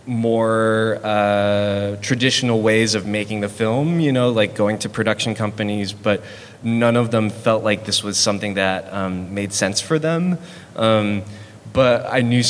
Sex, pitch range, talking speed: male, 100-120 Hz, 165 wpm